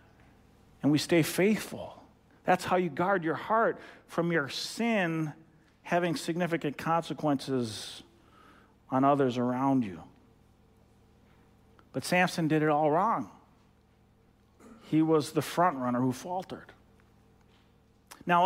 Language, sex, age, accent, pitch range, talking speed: English, male, 40-59, American, 165-215 Hz, 110 wpm